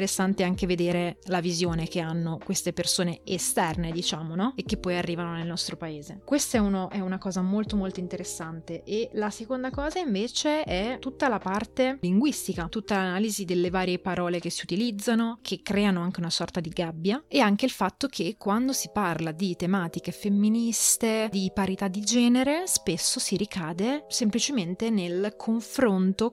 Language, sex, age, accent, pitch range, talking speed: Italian, female, 20-39, native, 175-215 Hz, 165 wpm